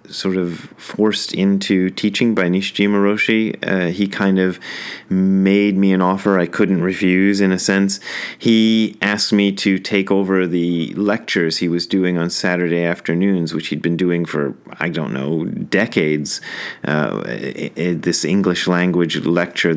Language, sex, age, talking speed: English, male, 30-49, 160 wpm